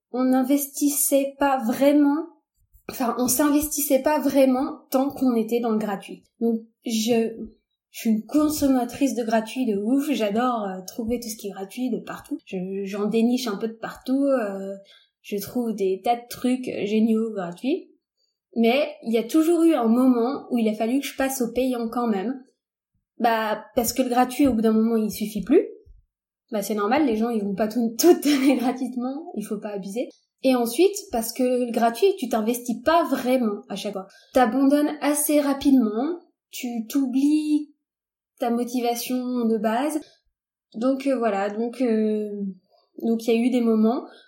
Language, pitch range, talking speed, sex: French, 220-275 Hz, 175 wpm, female